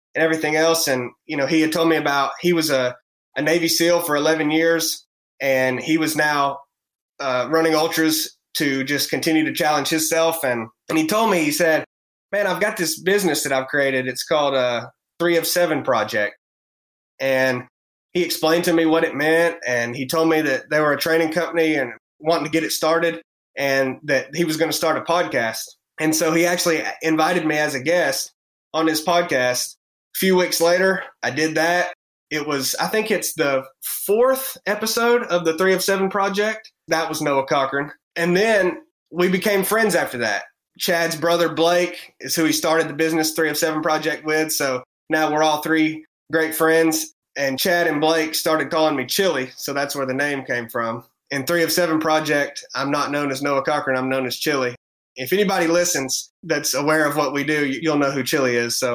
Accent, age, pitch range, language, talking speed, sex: American, 20-39, 140-170 Hz, English, 200 wpm, male